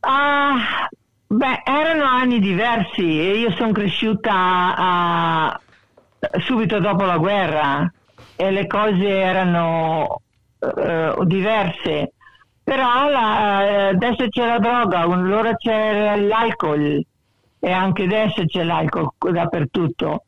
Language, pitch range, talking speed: Italian, 160-210 Hz, 105 wpm